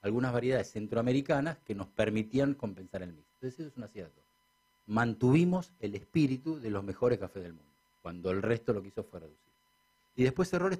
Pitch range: 95-130 Hz